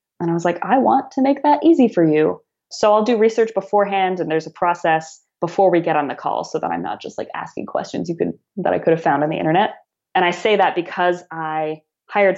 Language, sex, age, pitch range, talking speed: English, female, 20-39, 165-205 Hz, 250 wpm